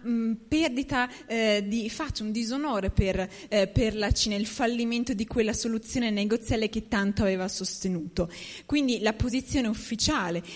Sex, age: female, 20-39